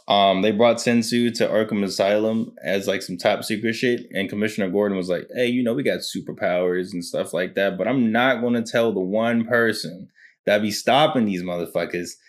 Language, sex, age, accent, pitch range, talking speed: English, male, 20-39, American, 95-120 Hz, 205 wpm